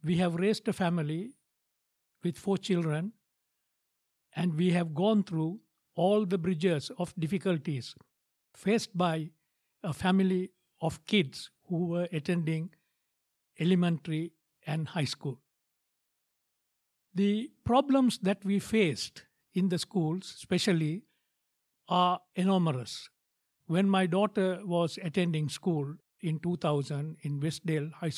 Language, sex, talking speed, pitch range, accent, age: English, male, 115 wpm, 155-200 Hz, Indian, 60-79